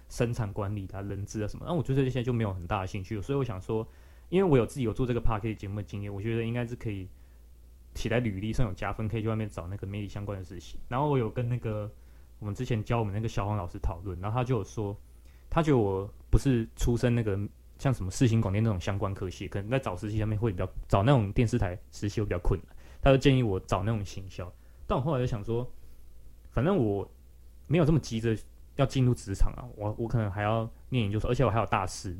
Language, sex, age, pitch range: Chinese, male, 20-39, 95-125 Hz